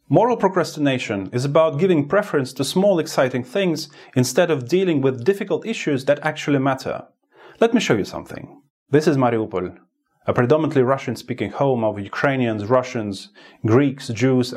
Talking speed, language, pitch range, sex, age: 150 wpm, English, 110-135 Hz, male, 30-49